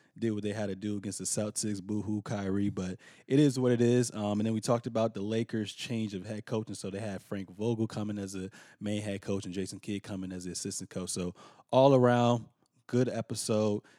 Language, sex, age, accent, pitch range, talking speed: English, male, 20-39, American, 95-110 Hz, 225 wpm